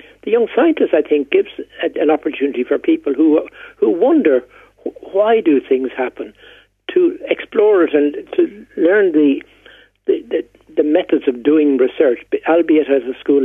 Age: 60-79